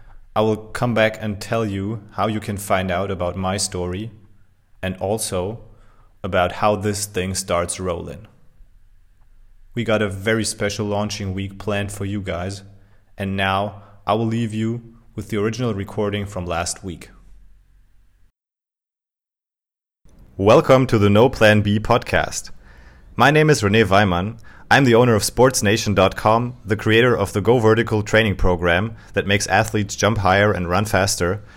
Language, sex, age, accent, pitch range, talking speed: English, male, 30-49, German, 95-115 Hz, 150 wpm